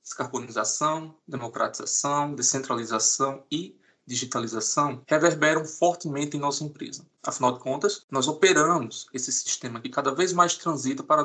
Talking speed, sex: 125 wpm, male